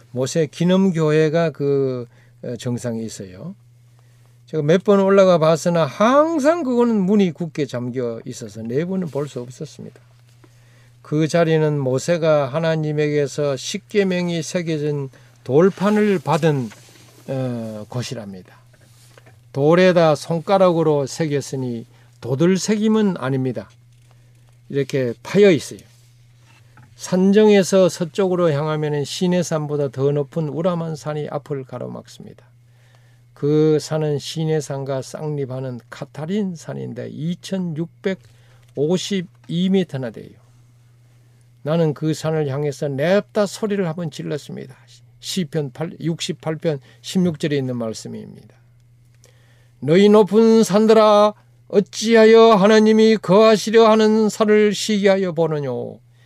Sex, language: male, Korean